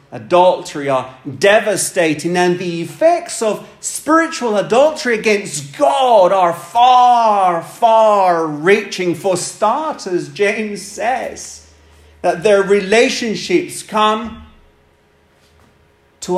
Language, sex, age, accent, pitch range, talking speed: English, male, 40-59, British, 170-235 Hz, 90 wpm